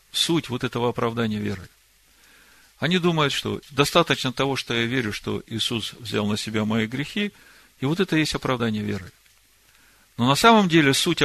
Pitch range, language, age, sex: 115-155 Hz, Russian, 50-69, male